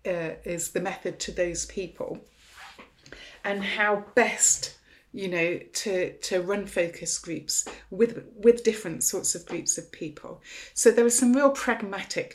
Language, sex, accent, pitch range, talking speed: English, female, British, 170-220 Hz, 150 wpm